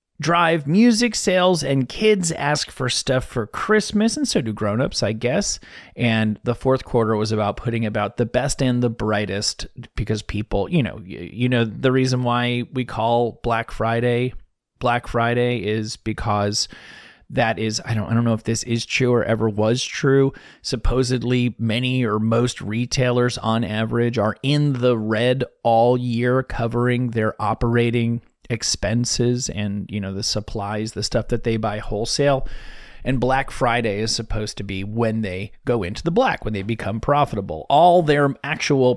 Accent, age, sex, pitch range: American, 30-49, male, 110-130 Hz